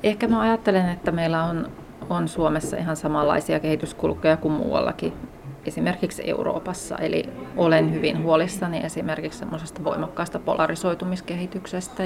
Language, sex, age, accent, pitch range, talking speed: Finnish, female, 30-49, native, 155-185 Hz, 110 wpm